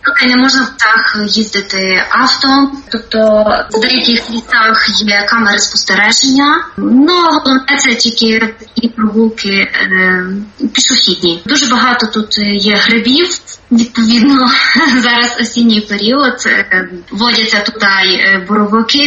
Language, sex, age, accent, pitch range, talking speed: Ukrainian, female, 20-39, native, 225-260 Hz, 105 wpm